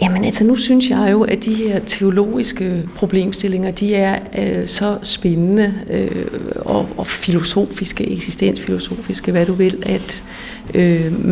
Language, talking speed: Danish, 140 wpm